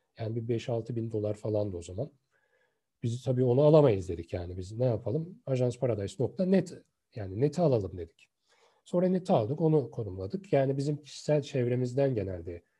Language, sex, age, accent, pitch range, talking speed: Turkish, male, 40-59, native, 100-135 Hz, 155 wpm